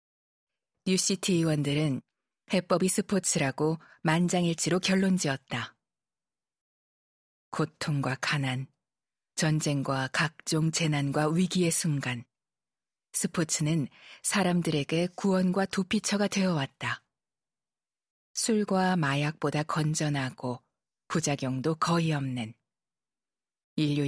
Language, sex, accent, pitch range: Korean, female, native, 145-185 Hz